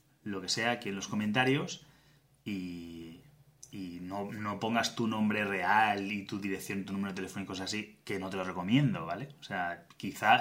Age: 20-39